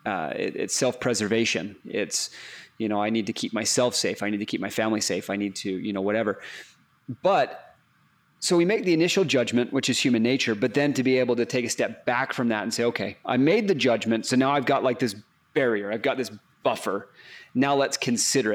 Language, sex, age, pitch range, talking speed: English, male, 30-49, 115-165 Hz, 225 wpm